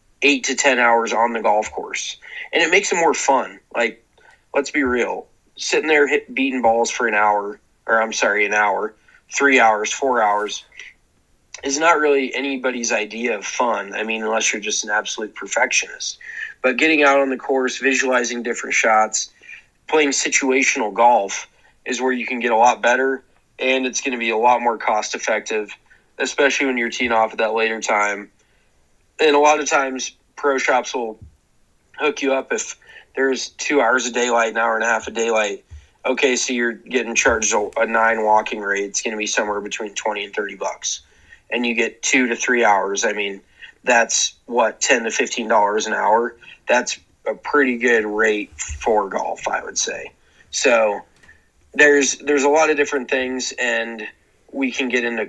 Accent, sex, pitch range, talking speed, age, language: American, male, 110-140 Hz, 185 wpm, 20-39, English